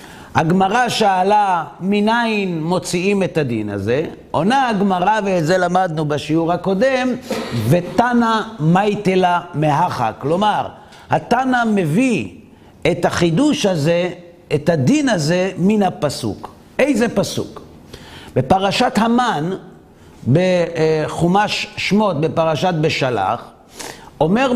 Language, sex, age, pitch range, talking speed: Hebrew, male, 50-69, 155-215 Hz, 90 wpm